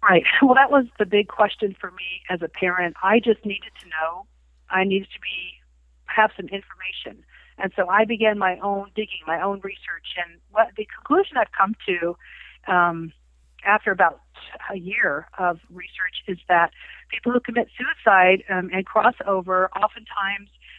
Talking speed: 165 wpm